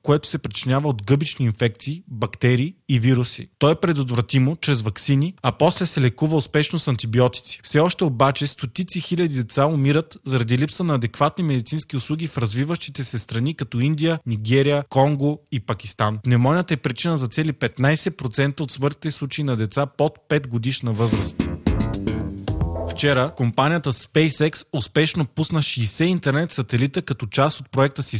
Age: 20-39